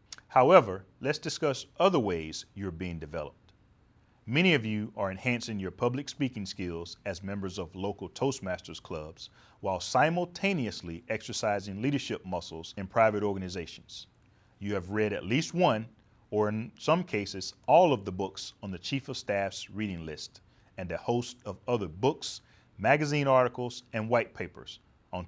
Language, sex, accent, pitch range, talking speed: English, male, American, 95-130 Hz, 150 wpm